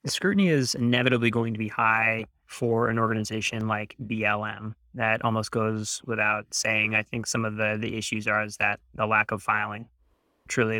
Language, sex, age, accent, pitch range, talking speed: English, male, 20-39, American, 110-120 Hz, 185 wpm